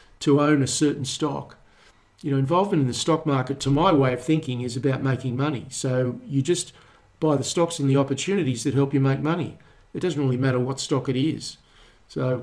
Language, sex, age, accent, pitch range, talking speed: English, male, 50-69, Australian, 130-155 Hz, 210 wpm